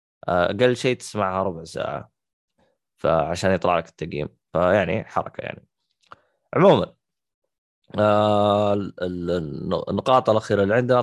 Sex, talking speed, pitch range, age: male, 100 wpm, 95-110 Hz, 20-39